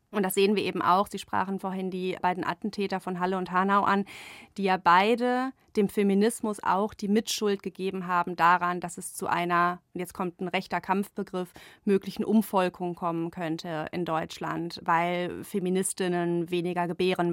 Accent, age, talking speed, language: German, 30-49, 165 wpm, German